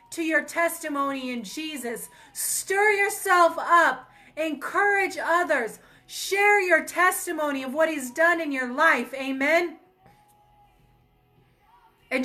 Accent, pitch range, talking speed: American, 250-295 Hz, 110 wpm